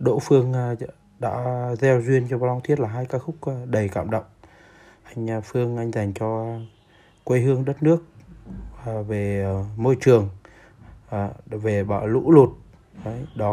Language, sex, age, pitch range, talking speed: Vietnamese, male, 20-39, 105-130 Hz, 145 wpm